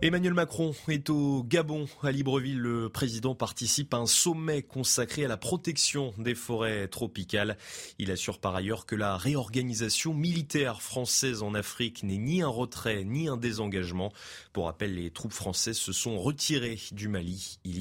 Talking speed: 165 wpm